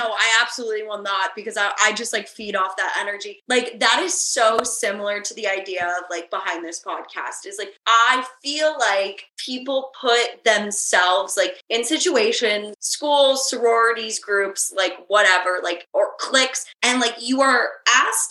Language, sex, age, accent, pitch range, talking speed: English, female, 20-39, American, 200-260 Hz, 165 wpm